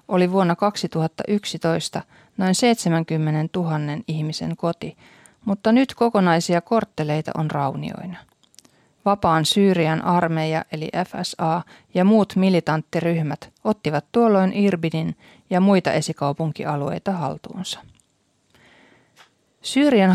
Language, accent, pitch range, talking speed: Finnish, native, 160-200 Hz, 90 wpm